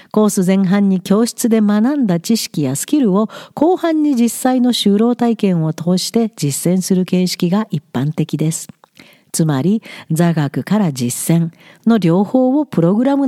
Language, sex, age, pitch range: Japanese, female, 50-69, 165-235 Hz